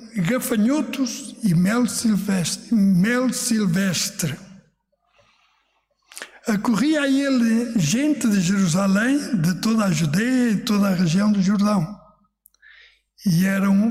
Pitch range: 190-235 Hz